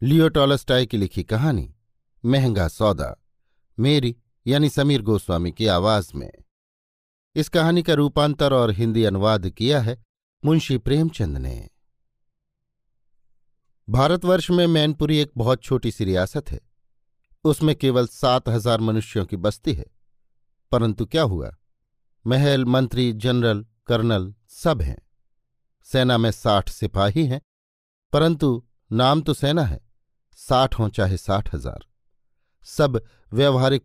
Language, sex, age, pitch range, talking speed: Hindi, male, 50-69, 110-140 Hz, 120 wpm